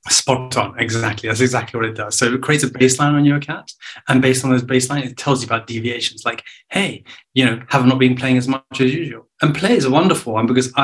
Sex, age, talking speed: male, 20-39, 250 wpm